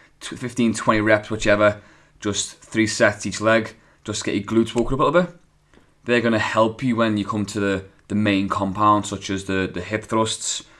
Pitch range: 100-115 Hz